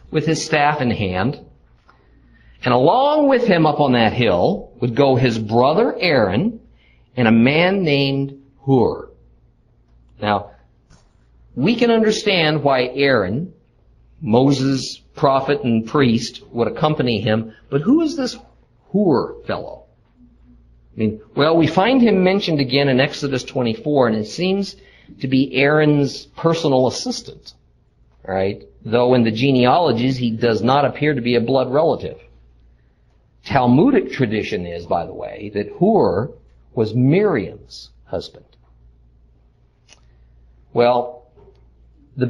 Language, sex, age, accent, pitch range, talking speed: English, male, 50-69, American, 110-155 Hz, 125 wpm